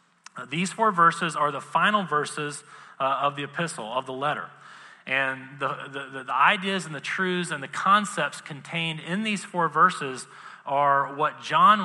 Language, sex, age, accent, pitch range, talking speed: English, male, 30-49, American, 140-185 Hz, 165 wpm